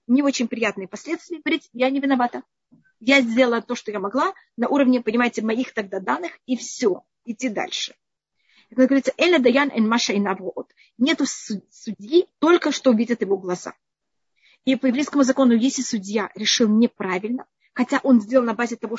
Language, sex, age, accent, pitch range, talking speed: Russian, female, 30-49, native, 220-280 Hz, 150 wpm